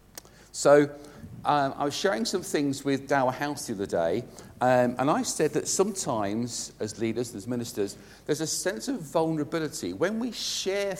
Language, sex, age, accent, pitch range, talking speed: English, male, 50-69, British, 115-150 Hz, 170 wpm